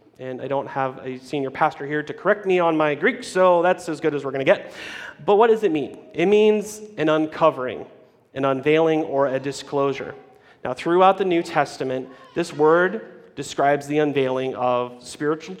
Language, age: English, 30-49